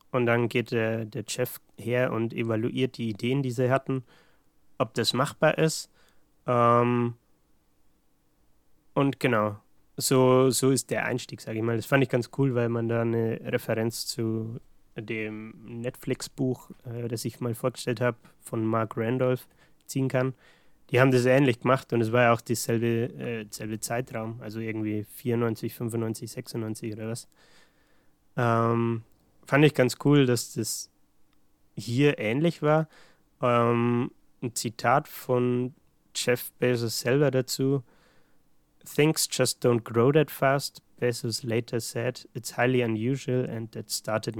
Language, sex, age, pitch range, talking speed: German, male, 20-39, 115-130 Hz, 145 wpm